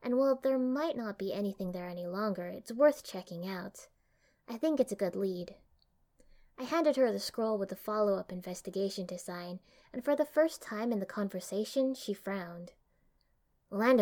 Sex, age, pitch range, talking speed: female, 20-39, 180-230 Hz, 180 wpm